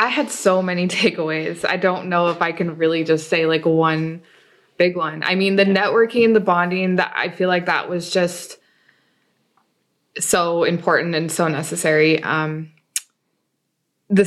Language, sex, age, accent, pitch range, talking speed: English, female, 20-39, American, 160-185 Hz, 160 wpm